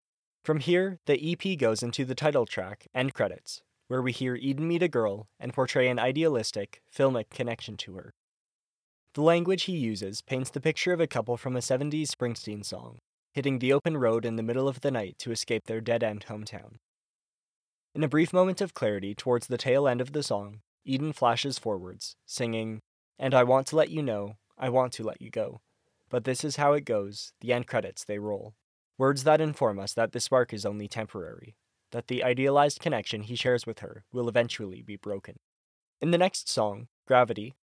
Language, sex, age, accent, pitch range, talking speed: English, male, 20-39, American, 110-140 Hz, 200 wpm